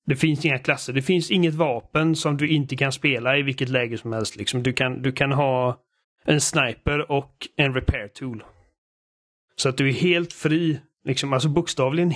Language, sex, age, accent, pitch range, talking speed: Swedish, male, 30-49, native, 125-145 Hz, 190 wpm